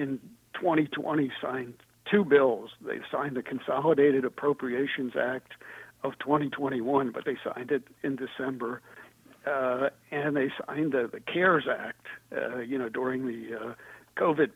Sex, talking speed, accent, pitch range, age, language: male, 140 wpm, American, 120-140 Hz, 60-79, English